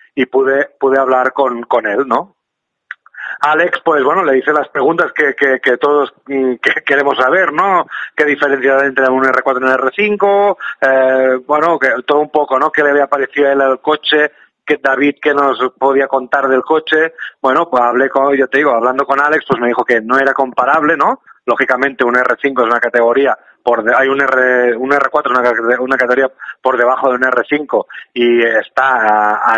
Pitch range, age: 125-150 Hz, 30-49